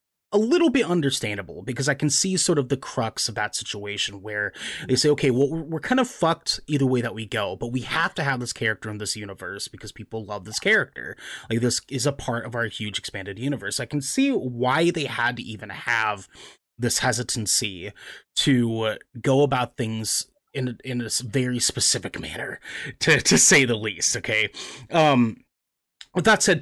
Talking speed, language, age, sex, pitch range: 190 wpm, English, 30-49, male, 110-145 Hz